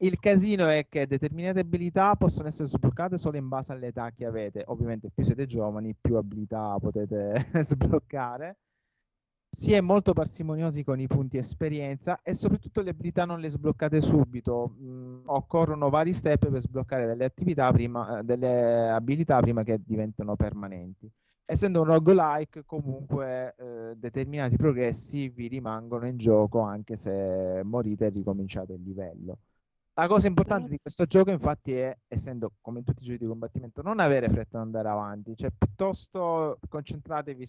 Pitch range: 115-155 Hz